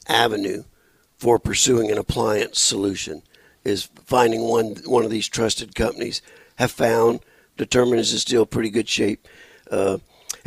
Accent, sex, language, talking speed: American, male, English, 130 wpm